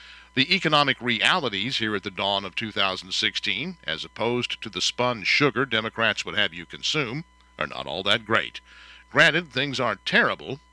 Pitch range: 105-145 Hz